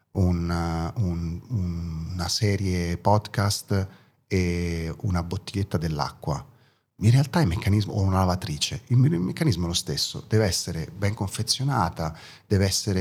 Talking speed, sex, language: 130 wpm, male, Italian